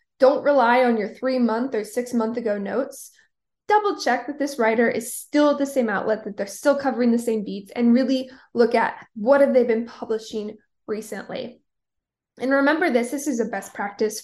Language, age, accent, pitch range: English, 20-39, American, 230-290 Hz